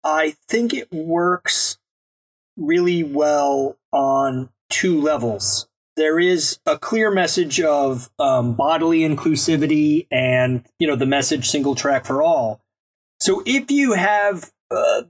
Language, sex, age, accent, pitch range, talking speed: English, male, 30-49, American, 145-220 Hz, 125 wpm